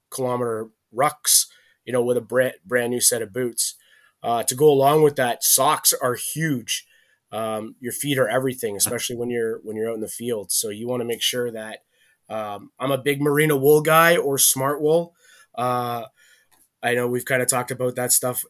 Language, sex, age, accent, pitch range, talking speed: English, male, 20-39, American, 115-135 Hz, 200 wpm